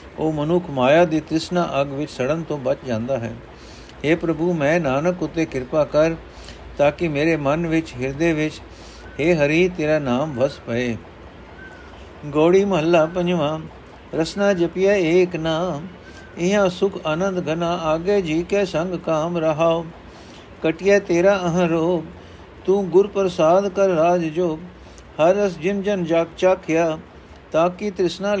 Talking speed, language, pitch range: 145 wpm, Punjabi, 140-180 Hz